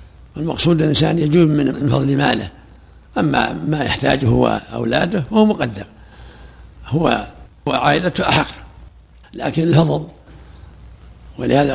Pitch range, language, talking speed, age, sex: 110-160 Hz, Arabic, 100 wpm, 60-79, male